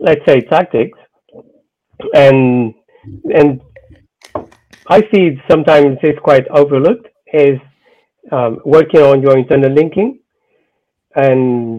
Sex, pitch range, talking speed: male, 115-145 Hz, 100 wpm